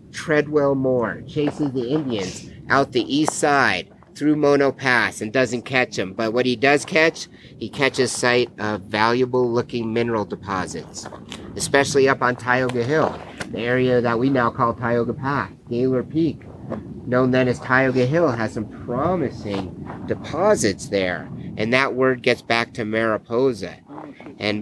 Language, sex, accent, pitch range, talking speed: English, male, American, 115-135 Hz, 150 wpm